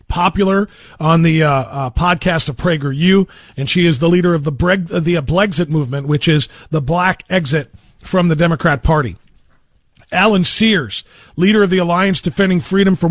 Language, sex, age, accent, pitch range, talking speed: English, male, 40-59, American, 150-185 Hz, 175 wpm